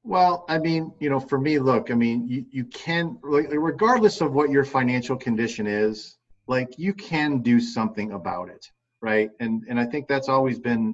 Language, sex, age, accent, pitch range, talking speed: English, male, 40-59, American, 110-130 Hz, 190 wpm